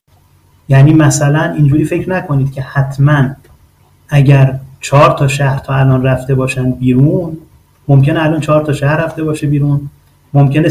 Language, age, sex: Persian, 30-49, male